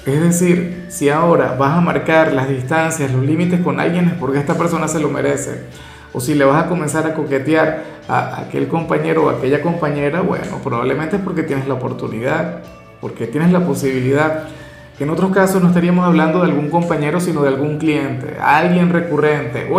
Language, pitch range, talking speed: Spanish, 140-180 Hz, 190 wpm